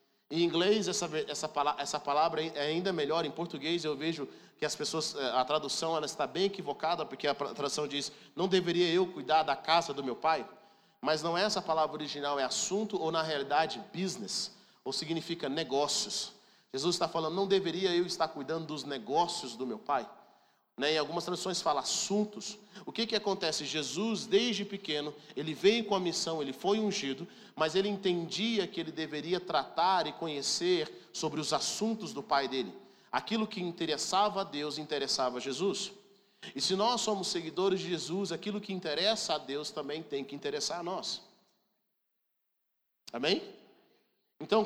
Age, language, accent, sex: 40-59, Portuguese, Brazilian, male